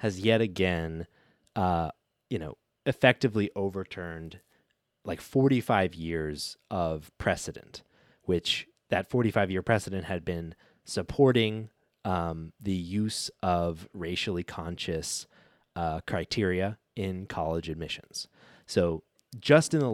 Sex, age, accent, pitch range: male, 20-39, American, 85-115 Hz